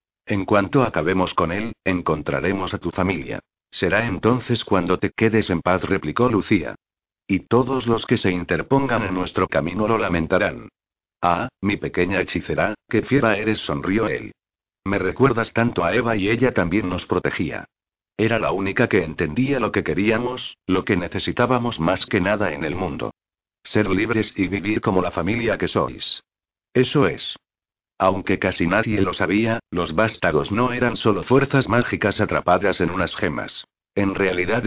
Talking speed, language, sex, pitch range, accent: 165 wpm, Spanish, male, 90-115 Hz, Spanish